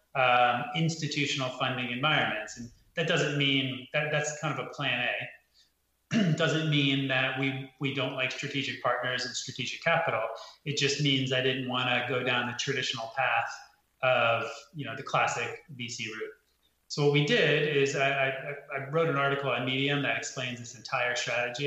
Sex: male